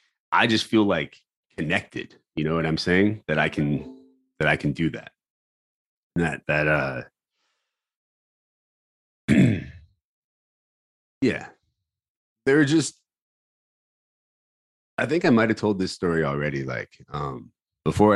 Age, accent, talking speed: 30-49, American, 120 wpm